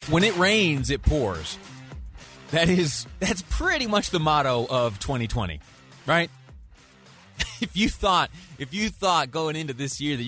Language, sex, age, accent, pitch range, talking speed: English, male, 30-49, American, 105-150 Hz, 150 wpm